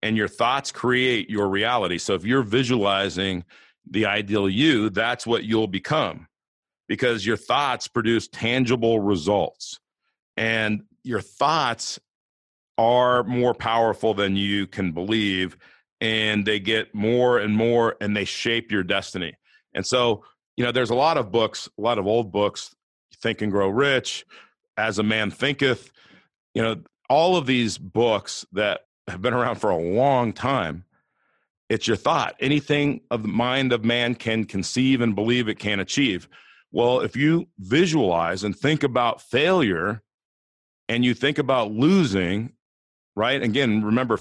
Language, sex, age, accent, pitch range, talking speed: English, male, 40-59, American, 105-125 Hz, 150 wpm